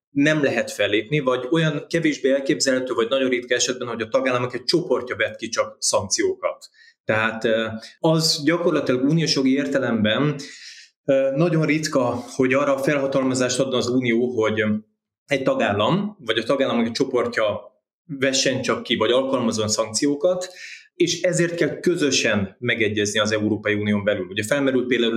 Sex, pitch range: male, 110-145 Hz